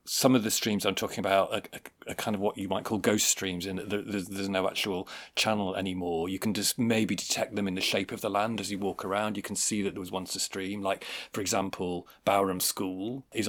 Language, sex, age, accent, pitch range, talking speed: English, male, 40-59, British, 95-105 Hz, 250 wpm